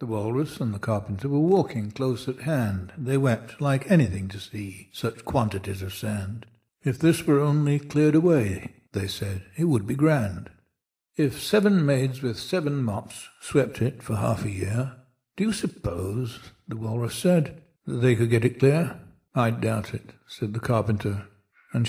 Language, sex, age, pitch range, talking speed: English, male, 60-79, 115-150 Hz, 175 wpm